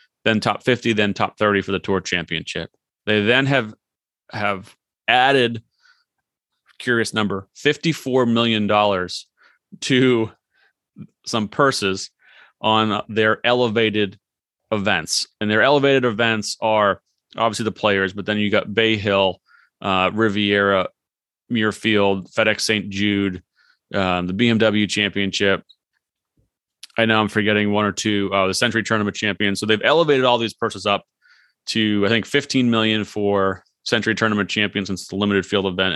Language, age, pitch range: English, 30-49, 100-115 Hz